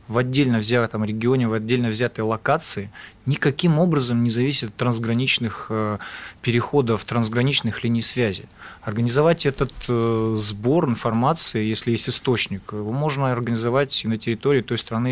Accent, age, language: native, 20-39, Russian